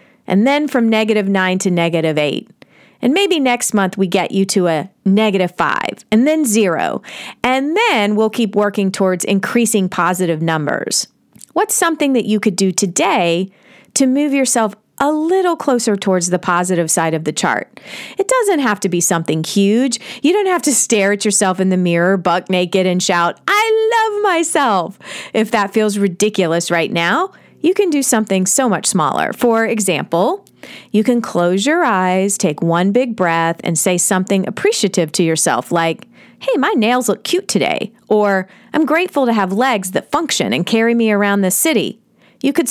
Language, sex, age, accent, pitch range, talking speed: English, female, 40-59, American, 185-260 Hz, 180 wpm